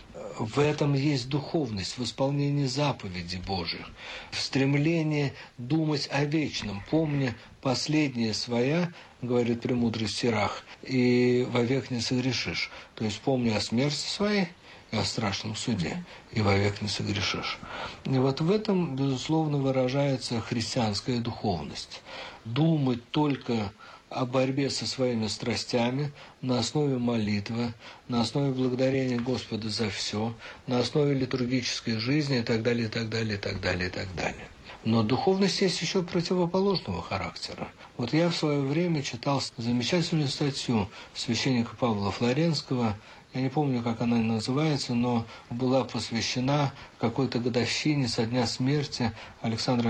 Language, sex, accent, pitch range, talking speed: Russian, male, native, 115-145 Hz, 135 wpm